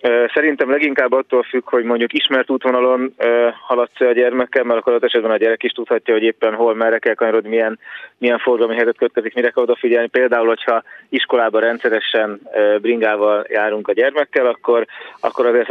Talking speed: 175 wpm